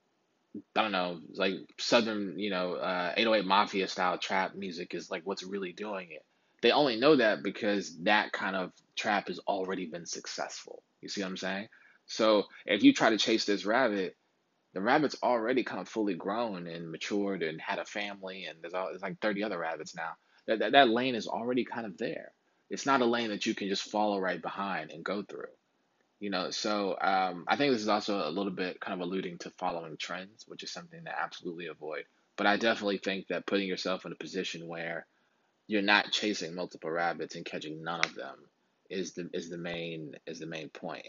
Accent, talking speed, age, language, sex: American, 210 wpm, 20-39, English, male